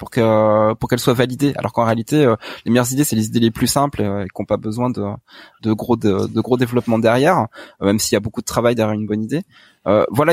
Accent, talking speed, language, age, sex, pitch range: French, 250 wpm, French, 20-39, male, 110-145 Hz